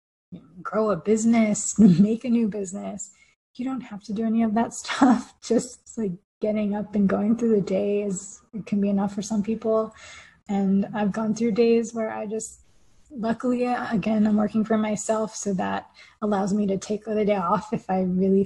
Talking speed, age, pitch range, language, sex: 190 wpm, 20-39, 200-225 Hz, English, female